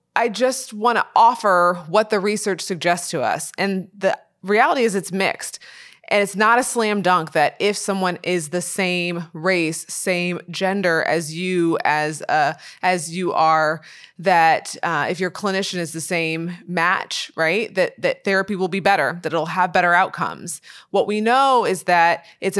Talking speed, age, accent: 175 wpm, 20-39, American